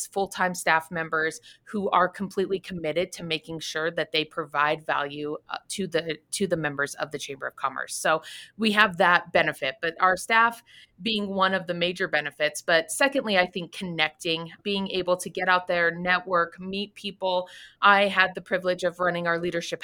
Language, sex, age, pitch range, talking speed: English, female, 30-49, 170-210 Hz, 180 wpm